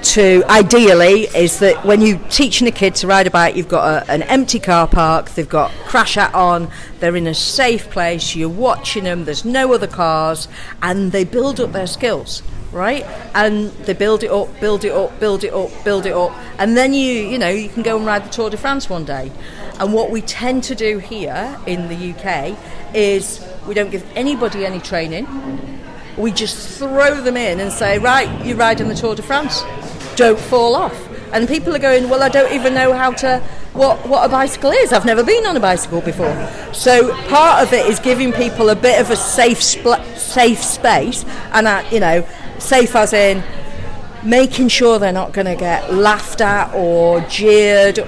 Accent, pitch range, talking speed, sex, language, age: British, 185-245 Hz, 200 wpm, female, English, 50-69